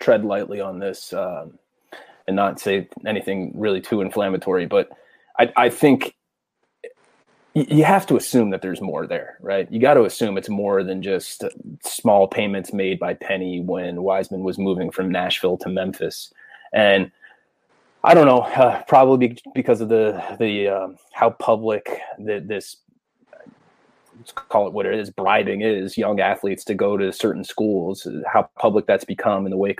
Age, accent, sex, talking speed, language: 20-39, American, male, 170 wpm, English